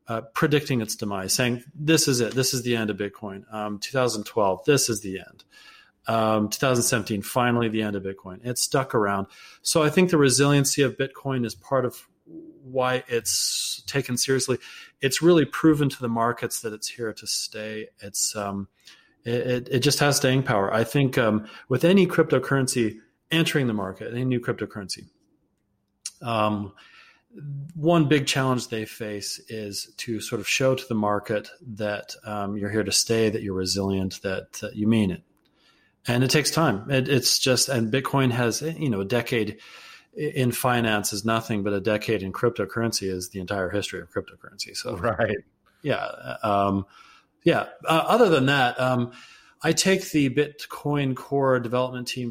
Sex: male